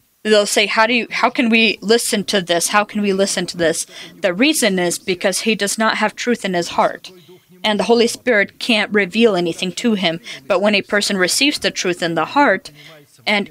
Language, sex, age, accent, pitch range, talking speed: English, female, 30-49, American, 175-225 Hz, 220 wpm